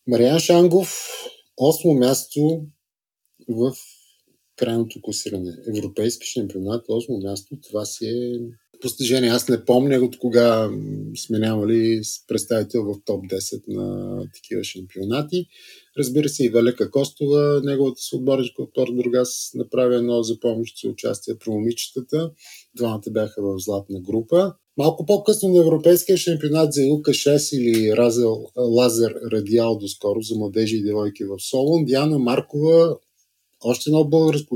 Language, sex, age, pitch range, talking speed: Bulgarian, male, 30-49, 115-150 Hz, 125 wpm